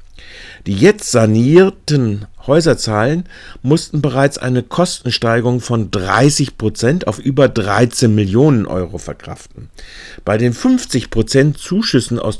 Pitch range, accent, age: 100-140 Hz, German, 50-69